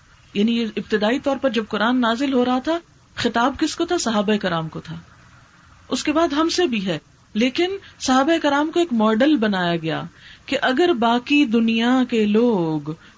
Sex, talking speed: female, 180 wpm